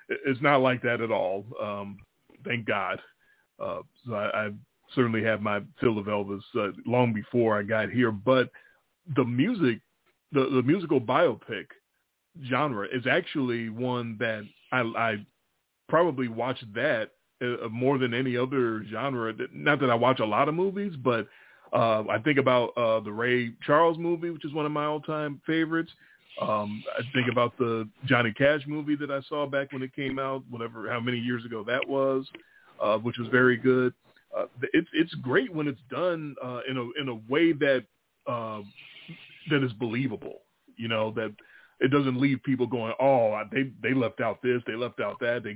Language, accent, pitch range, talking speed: English, American, 115-135 Hz, 180 wpm